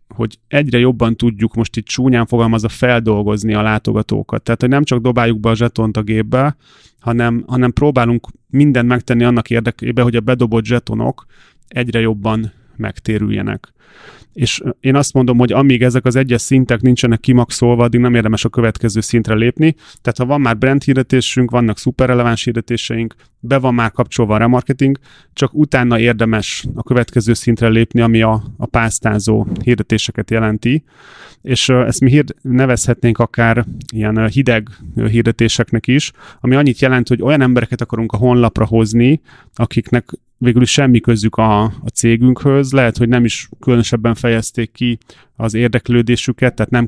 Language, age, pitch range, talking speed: Hungarian, 30-49, 115-125 Hz, 155 wpm